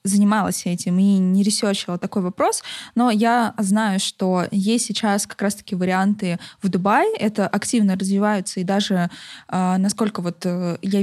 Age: 20-39